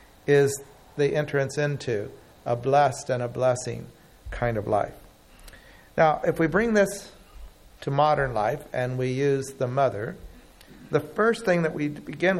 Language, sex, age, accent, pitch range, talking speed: English, male, 60-79, American, 125-160 Hz, 150 wpm